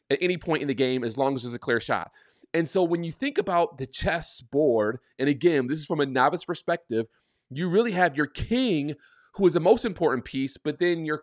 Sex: male